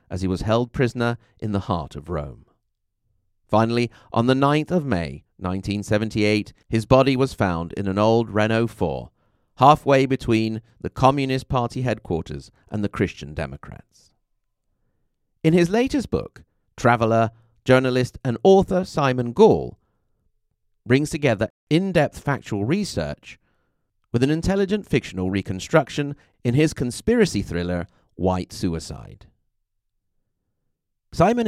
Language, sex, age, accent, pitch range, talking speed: English, male, 40-59, British, 100-140 Hz, 120 wpm